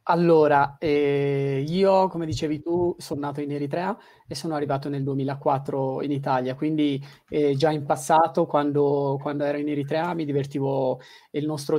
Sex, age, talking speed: male, 20-39, 160 wpm